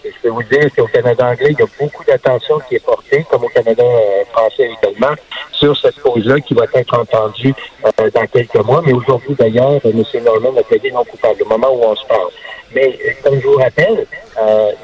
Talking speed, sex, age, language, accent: 225 wpm, male, 60-79, French, French